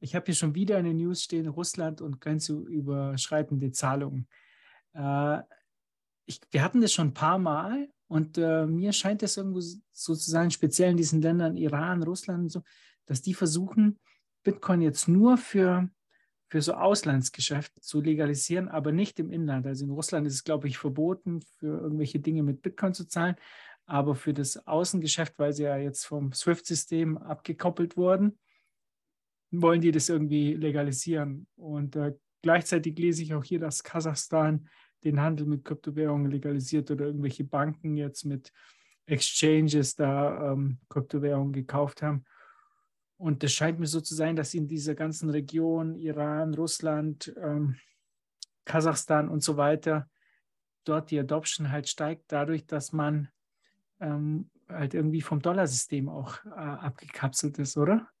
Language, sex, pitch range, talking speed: German, male, 145-170 Hz, 155 wpm